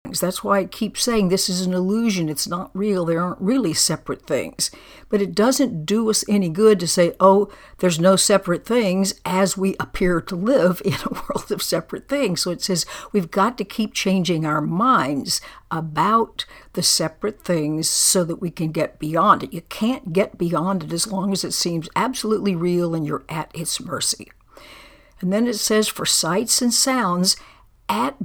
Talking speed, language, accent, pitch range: 190 wpm, English, American, 175-220 Hz